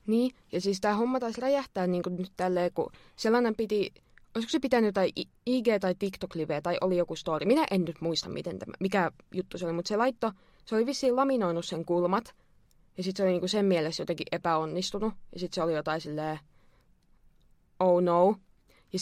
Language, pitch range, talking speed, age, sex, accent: Finnish, 165-200 Hz, 195 wpm, 20-39, female, native